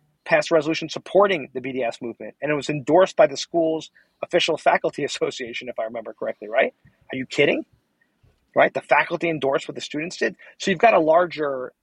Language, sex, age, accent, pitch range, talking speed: English, male, 40-59, American, 120-150 Hz, 190 wpm